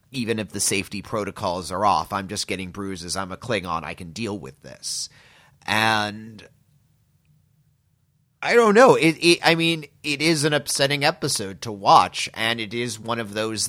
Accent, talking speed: American, 175 wpm